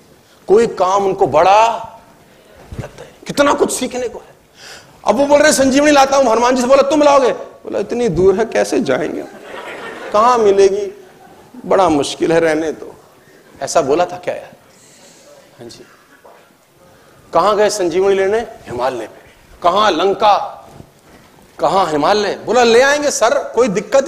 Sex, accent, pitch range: male, native, 195-295 Hz